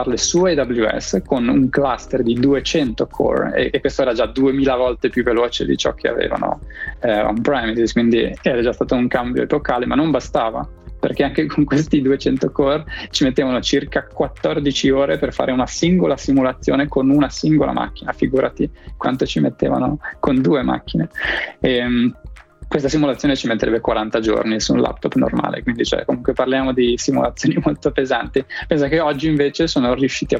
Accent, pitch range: native, 120-140 Hz